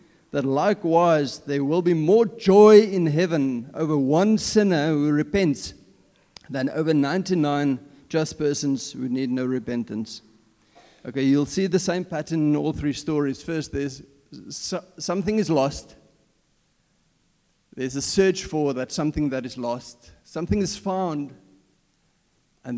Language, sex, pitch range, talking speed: English, male, 135-180 Hz, 135 wpm